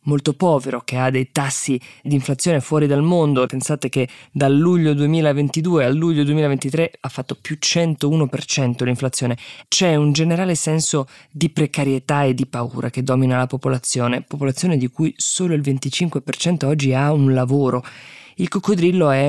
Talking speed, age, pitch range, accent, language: 155 wpm, 20-39, 130-150 Hz, native, Italian